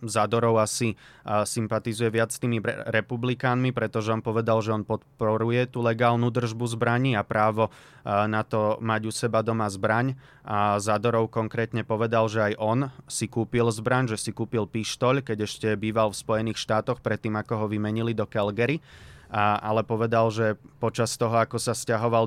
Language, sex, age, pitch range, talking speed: Slovak, male, 20-39, 110-120 Hz, 165 wpm